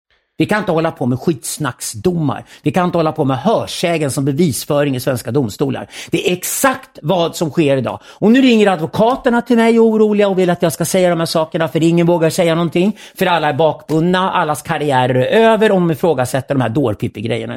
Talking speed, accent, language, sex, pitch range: 210 wpm, Swedish, English, male, 135-180 Hz